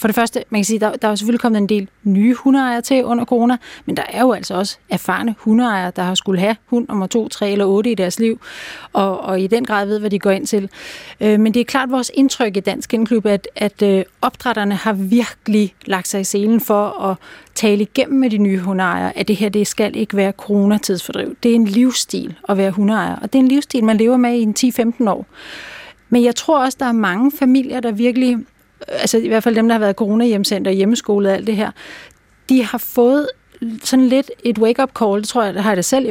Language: Danish